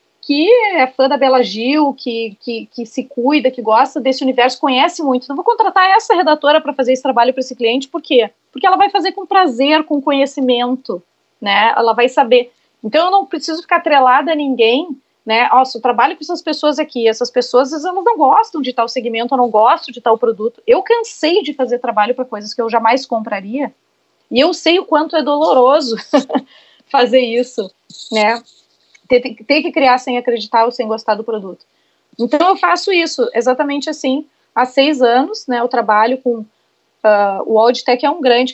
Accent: Brazilian